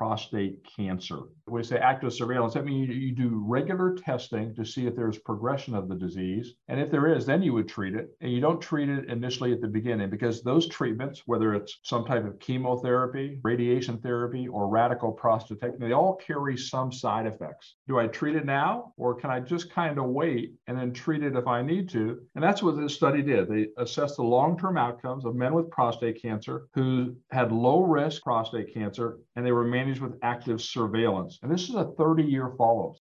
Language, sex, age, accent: English, male, 50-69, American